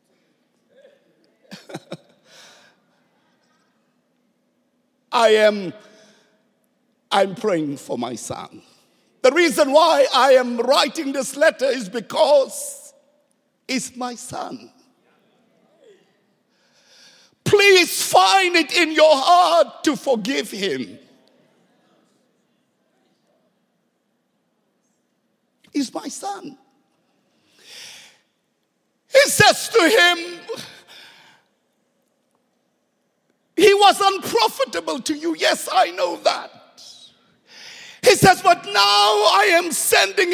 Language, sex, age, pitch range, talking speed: English, male, 60-79, 255-370 Hz, 75 wpm